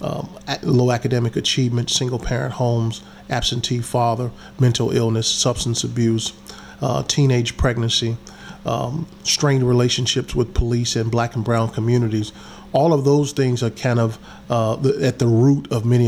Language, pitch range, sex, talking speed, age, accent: English, 115-130 Hz, male, 145 wpm, 40-59, American